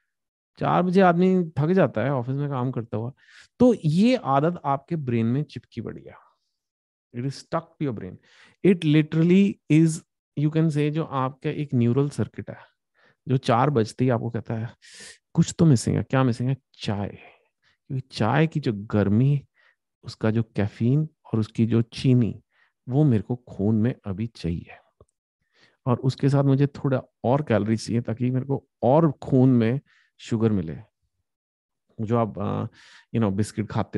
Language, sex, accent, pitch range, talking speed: English, male, Indian, 115-155 Hz, 125 wpm